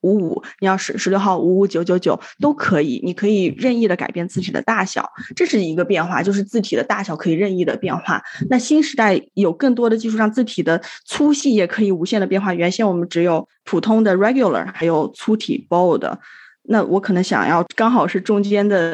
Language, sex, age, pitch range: Chinese, female, 20-39, 175-220 Hz